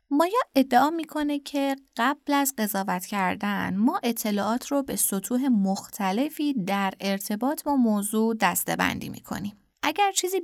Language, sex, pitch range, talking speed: Persian, female, 190-270 Hz, 130 wpm